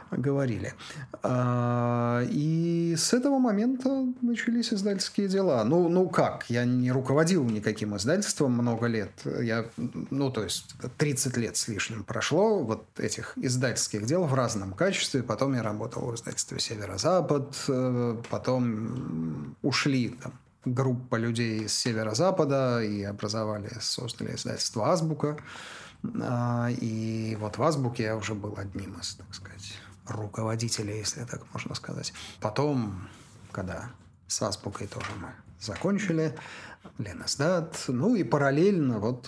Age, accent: 30-49, native